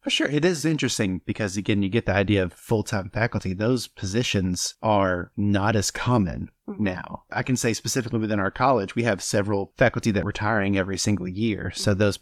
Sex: male